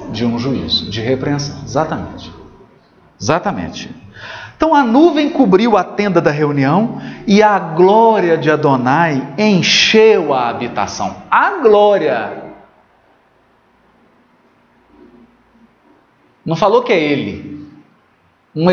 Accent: Brazilian